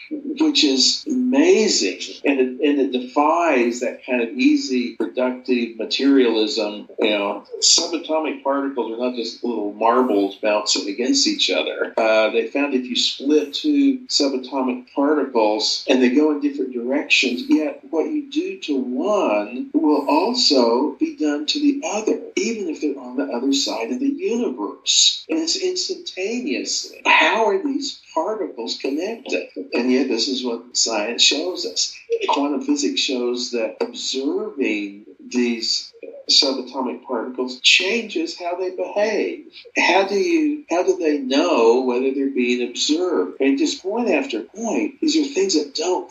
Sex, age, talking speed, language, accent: male, 50-69, 145 wpm, English, American